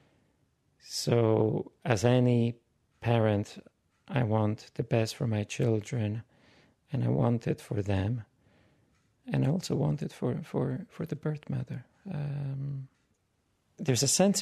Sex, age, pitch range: male, 40-59, 100-130 Hz